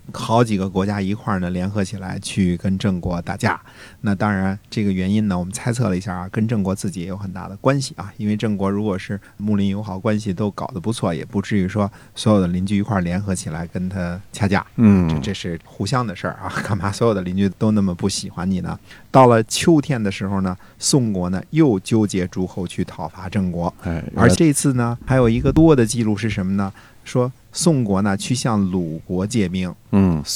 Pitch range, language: 95-115 Hz, Chinese